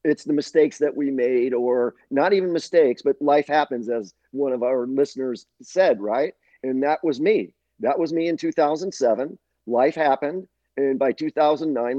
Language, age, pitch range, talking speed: English, 50-69, 125-160 Hz, 170 wpm